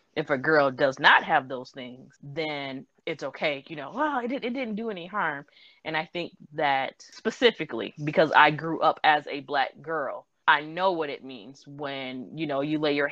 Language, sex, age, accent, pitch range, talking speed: English, female, 20-39, American, 140-160 Hz, 200 wpm